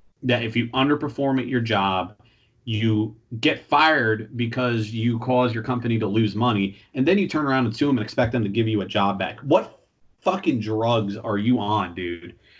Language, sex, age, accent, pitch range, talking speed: English, male, 30-49, American, 110-135 Hz, 195 wpm